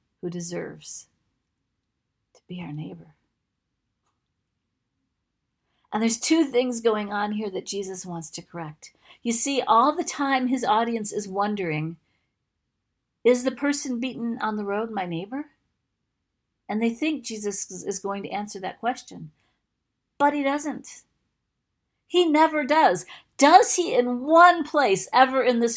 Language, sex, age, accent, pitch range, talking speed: English, female, 50-69, American, 205-280 Hz, 140 wpm